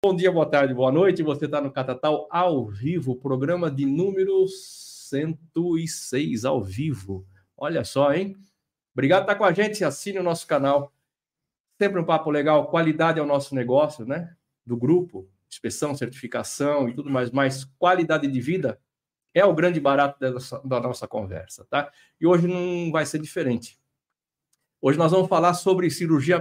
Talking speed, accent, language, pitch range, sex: 165 wpm, Brazilian, Portuguese, 135-180 Hz, male